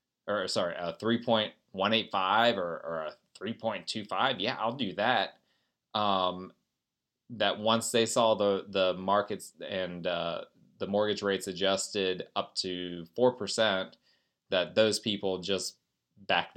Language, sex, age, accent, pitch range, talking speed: English, male, 20-39, American, 100-125 Hz, 125 wpm